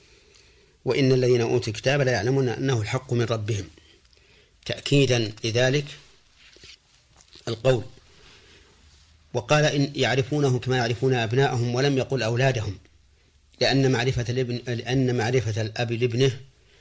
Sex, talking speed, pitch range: male, 100 wpm, 110-130 Hz